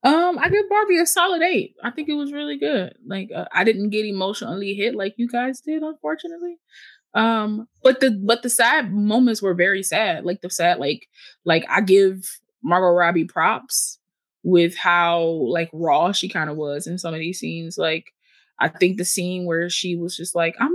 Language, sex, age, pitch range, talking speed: English, female, 20-39, 175-260 Hz, 200 wpm